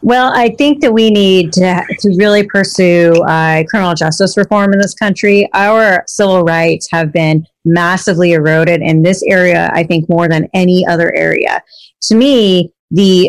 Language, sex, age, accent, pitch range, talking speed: English, female, 30-49, American, 170-200 Hz, 165 wpm